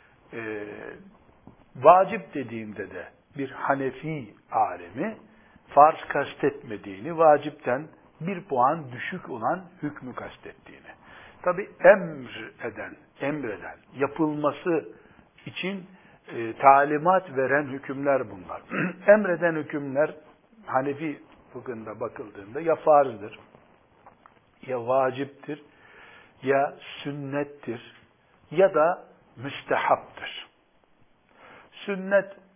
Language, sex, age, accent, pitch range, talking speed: Turkish, male, 60-79, native, 135-180 Hz, 80 wpm